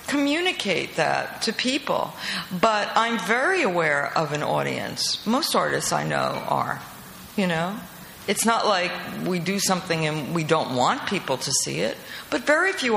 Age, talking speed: 50-69, 160 wpm